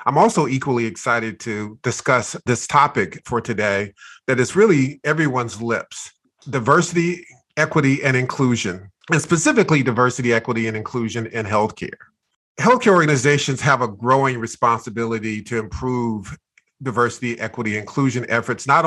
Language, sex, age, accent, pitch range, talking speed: English, male, 40-59, American, 110-135 Hz, 125 wpm